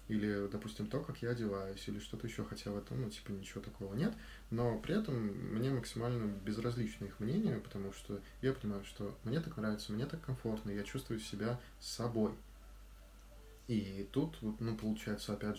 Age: 20-39